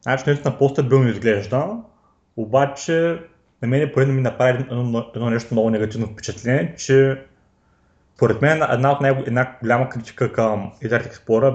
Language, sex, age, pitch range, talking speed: Bulgarian, male, 30-49, 110-135 Hz, 140 wpm